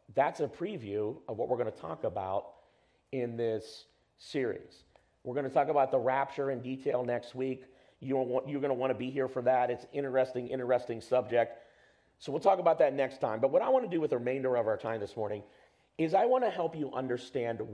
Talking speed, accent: 225 wpm, American